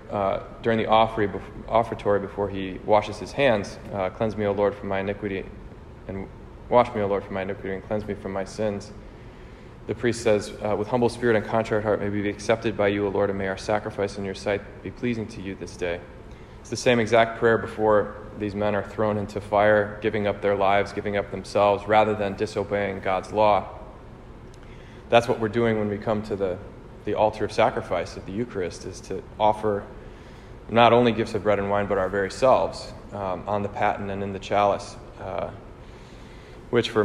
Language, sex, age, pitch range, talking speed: English, male, 20-39, 100-110 Hz, 205 wpm